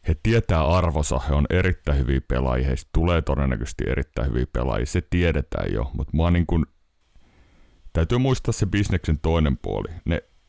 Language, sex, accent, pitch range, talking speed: Finnish, male, native, 70-85 Hz, 155 wpm